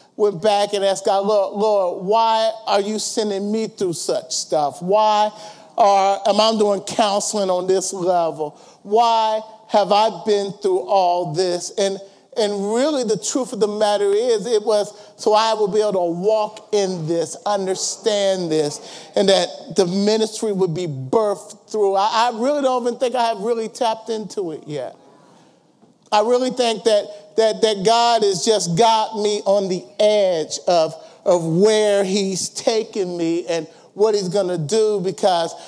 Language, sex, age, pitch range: English, male, 40-59, 195-230 Hz